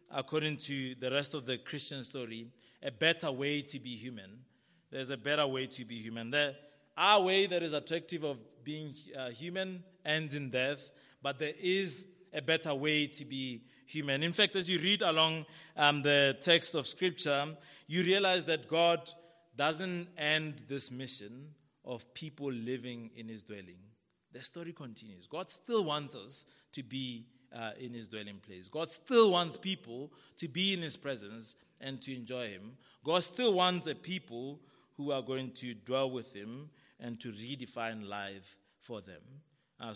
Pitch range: 125-160 Hz